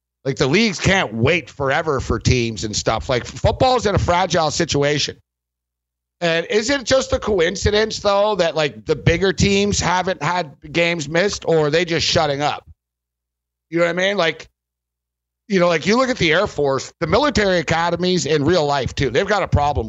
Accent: American